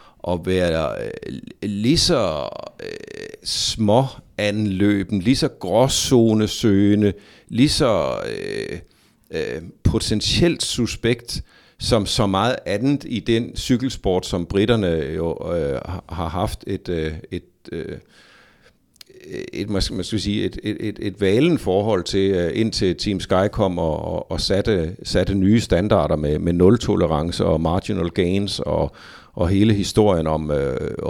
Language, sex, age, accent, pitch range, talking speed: Danish, male, 50-69, native, 90-110 Hz, 135 wpm